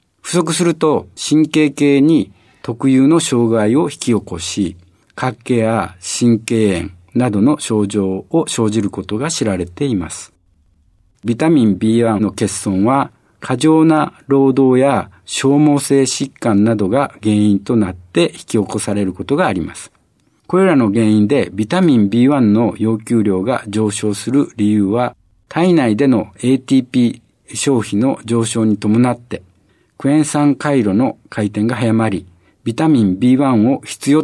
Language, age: Japanese, 60-79